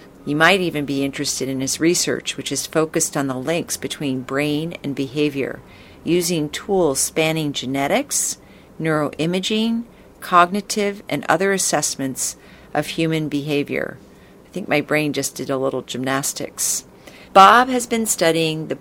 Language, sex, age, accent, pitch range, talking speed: English, female, 50-69, American, 135-175 Hz, 140 wpm